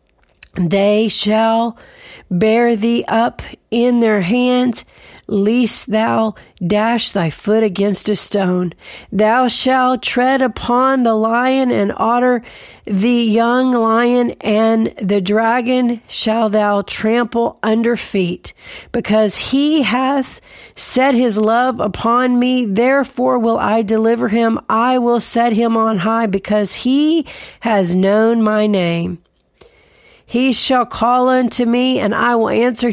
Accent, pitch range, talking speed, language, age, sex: American, 205-245 Hz, 125 wpm, English, 40-59, female